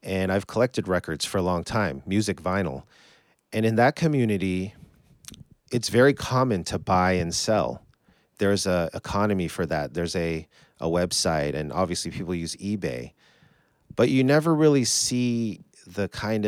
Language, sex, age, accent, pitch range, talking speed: English, male, 40-59, American, 85-110 Hz, 155 wpm